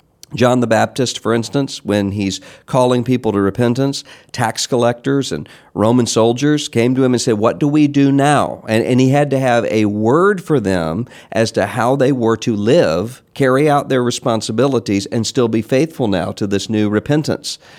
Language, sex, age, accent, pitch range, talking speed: English, male, 50-69, American, 105-140 Hz, 190 wpm